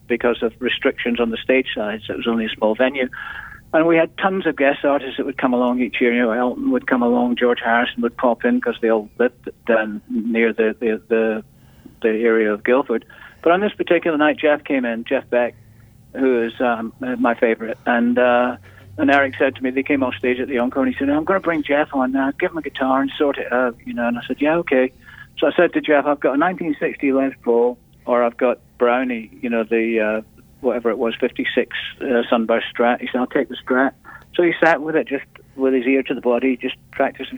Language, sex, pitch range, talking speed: English, male, 120-140 Hz, 240 wpm